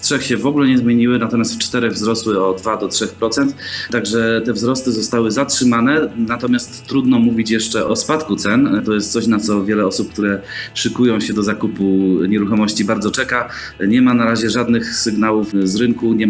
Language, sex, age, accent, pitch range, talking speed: Polish, male, 30-49, native, 100-120 Hz, 175 wpm